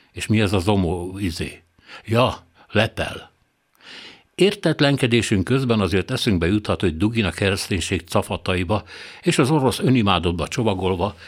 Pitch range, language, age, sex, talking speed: 90-110 Hz, Hungarian, 60-79, male, 120 wpm